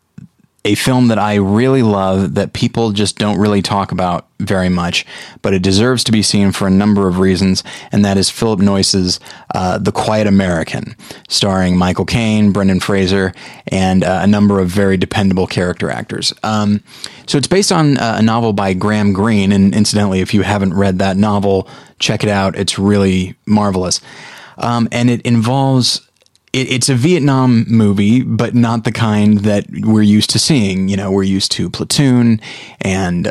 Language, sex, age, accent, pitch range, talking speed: English, male, 30-49, American, 95-110 Hz, 175 wpm